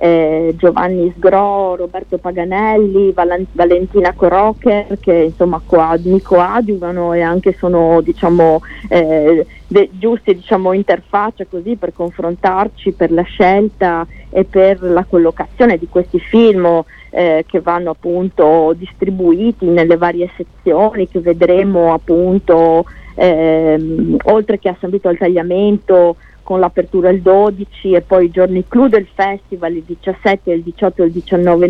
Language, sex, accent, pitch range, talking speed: Italian, female, native, 170-195 Hz, 135 wpm